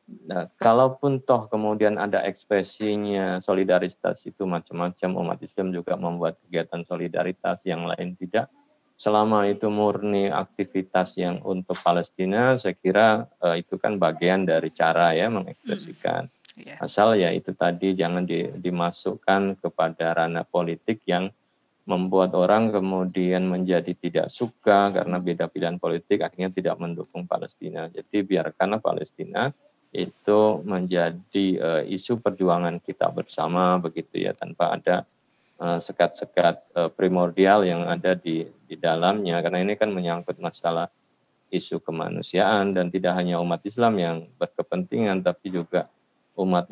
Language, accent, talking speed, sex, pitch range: Indonesian, native, 125 wpm, male, 85-100 Hz